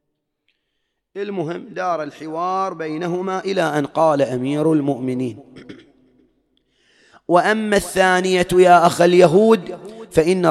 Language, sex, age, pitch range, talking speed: English, male, 30-49, 145-185 Hz, 85 wpm